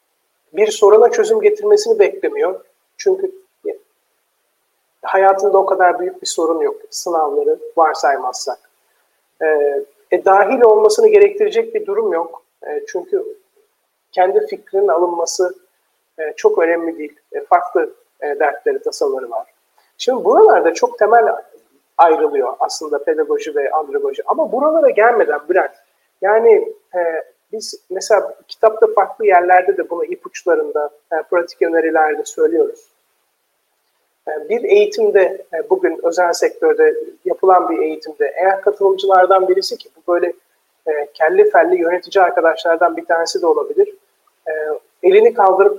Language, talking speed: Turkish, 115 wpm